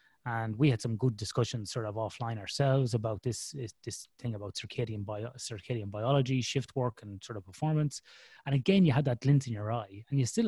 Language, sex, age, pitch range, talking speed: English, male, 30-49, 115-145 Hz, 210 wpm